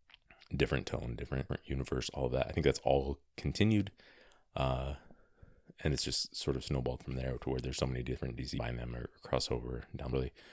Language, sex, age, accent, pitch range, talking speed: English, male, 30-49, American, 65-80 Hz, 200 wpm